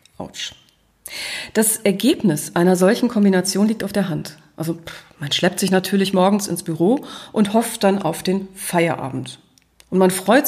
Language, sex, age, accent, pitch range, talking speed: German, female, 40-59, German, 175-215 Hz, 150 wpm